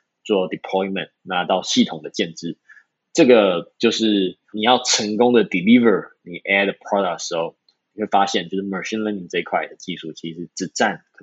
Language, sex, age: Chinese, male, 20-39